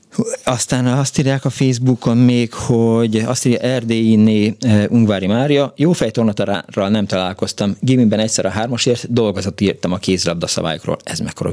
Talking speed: 135 wpm